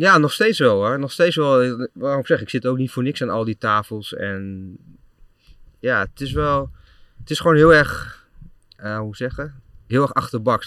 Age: 30-49